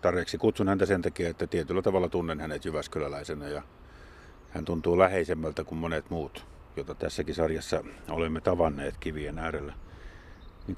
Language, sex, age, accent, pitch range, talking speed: Finnish, male, 50-69, native, 85-95 Hz, 145 wpm